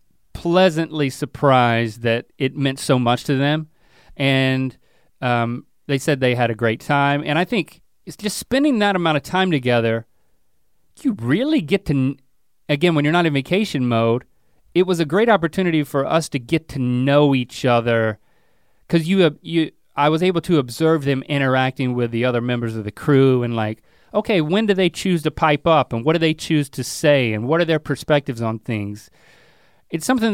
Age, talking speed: 30-49, 190 wpm